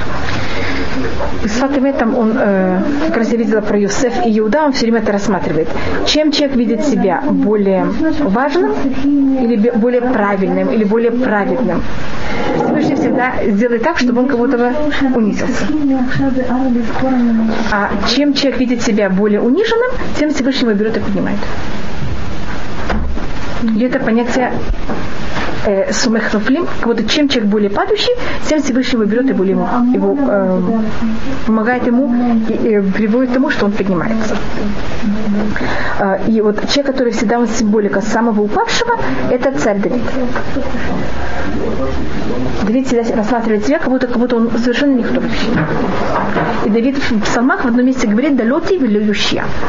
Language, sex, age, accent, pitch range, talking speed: Russian, female, 30-49, native, 215-265 Hz, 130 wpm